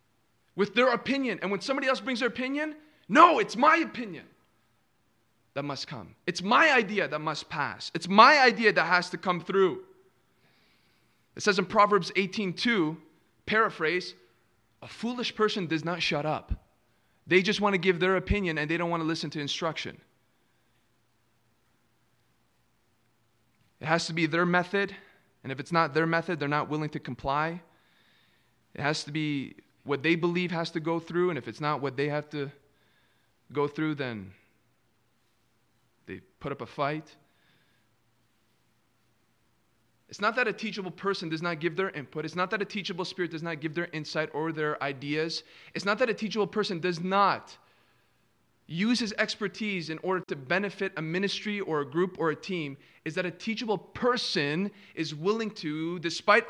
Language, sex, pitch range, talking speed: English, male, 145-200 Hz, 170 wpm